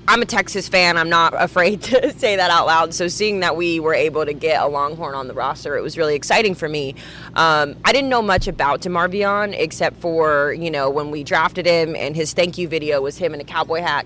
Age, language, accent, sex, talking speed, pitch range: 20-39, English, American, female, 245 wpm, 155-185 Hz